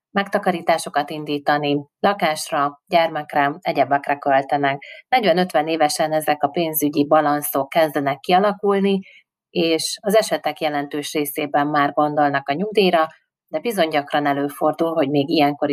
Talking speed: 115 wpm